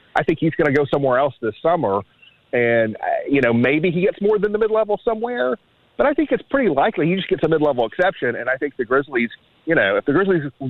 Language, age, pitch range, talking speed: English, 40-59, 125-175 Hz, 240 wpm